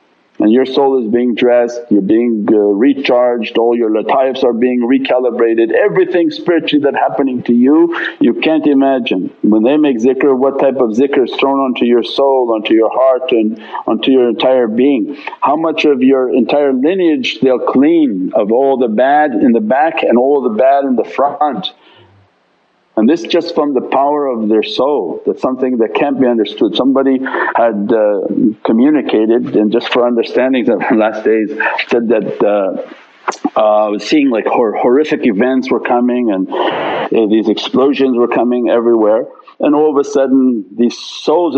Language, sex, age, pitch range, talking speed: English, male, 50-69, 115-145 Hz, 175 wpm